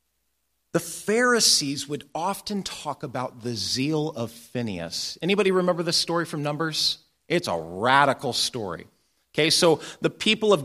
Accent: American